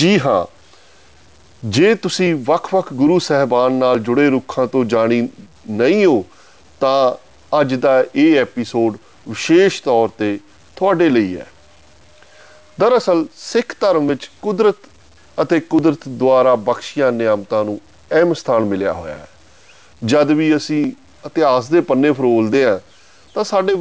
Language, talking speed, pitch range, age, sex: Punjabi, 130 wpm, 115-165 Hz, 30-49, male